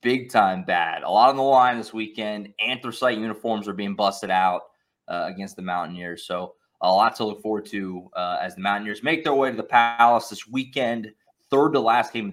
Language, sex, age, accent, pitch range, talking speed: English, male, 20-39, American, 100-120 Hz, 215 wpm